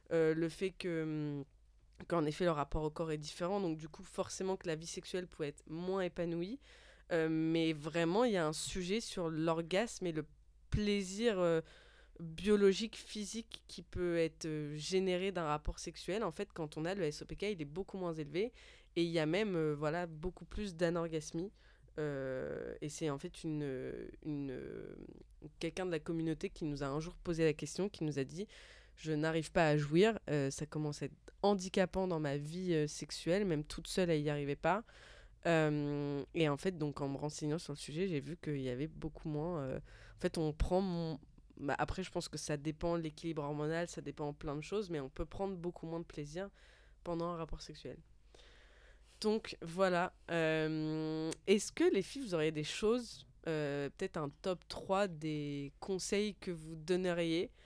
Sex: female